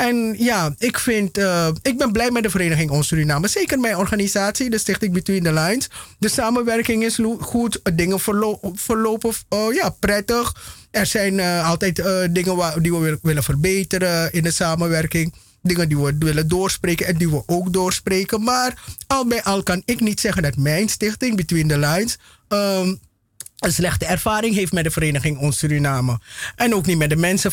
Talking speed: 170 wpm